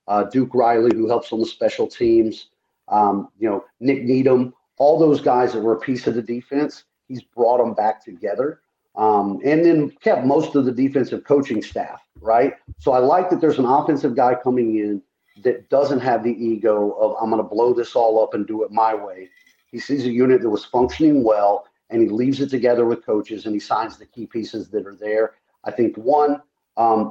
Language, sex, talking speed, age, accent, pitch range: English, male, 215 wpm, 40-59, American, 115-145 Hz